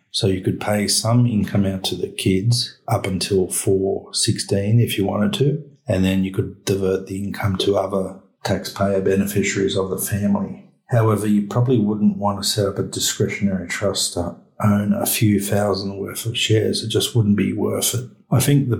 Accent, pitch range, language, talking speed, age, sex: Australian, 100-115 Hz, English, 190 wpm, 50-69, male